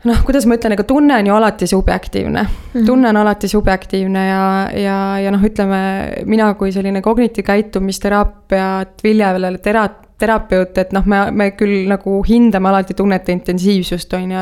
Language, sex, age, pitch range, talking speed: English, female, 20-39, 190-215 Hz, 155 wpm